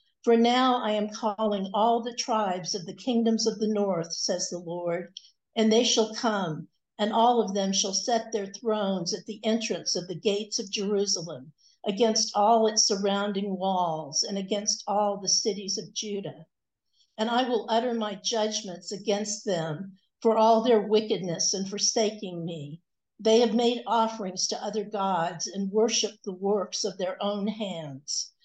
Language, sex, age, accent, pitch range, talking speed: English, female, 60-79, American, 190-225 Hz, 165 wpm